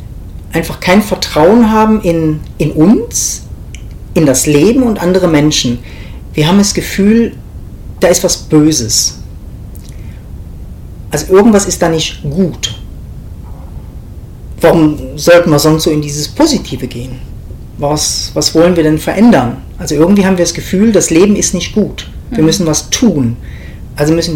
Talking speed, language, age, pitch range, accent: 145 wpm, German, 40-59, 130-185 Hz, German